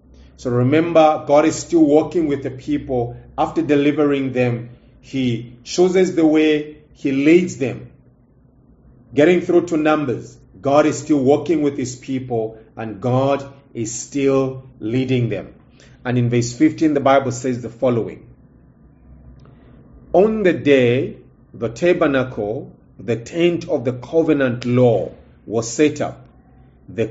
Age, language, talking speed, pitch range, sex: 40-59, English, 135 wpm, 120-155 Hz, male